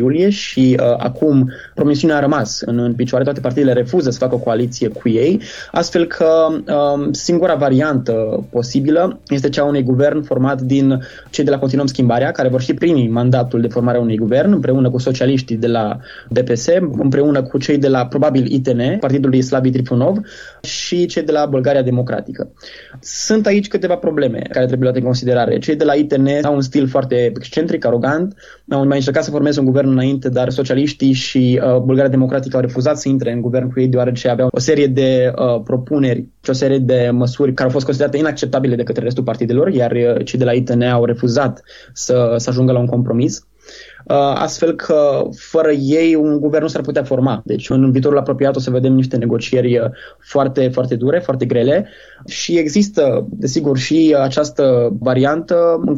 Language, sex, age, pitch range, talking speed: Romanian, male, 20-39, 125-145 Hz, 190 wpm